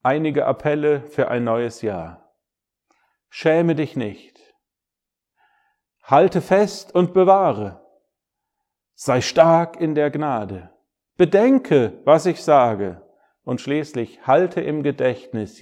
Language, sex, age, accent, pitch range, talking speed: German, male, 50-69, German, 130-190 Hz, 105 wpm